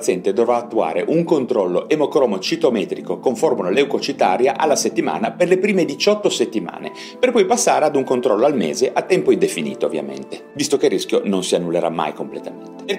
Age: 30-49